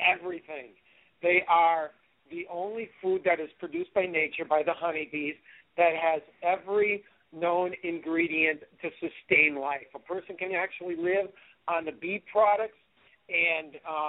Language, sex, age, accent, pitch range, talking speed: English, male, 50-69, American, 160-185 Hz, 135 wpm